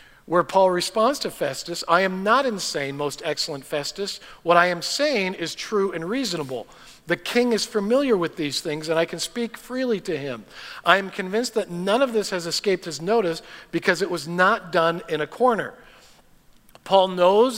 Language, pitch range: English, 175-230 Hz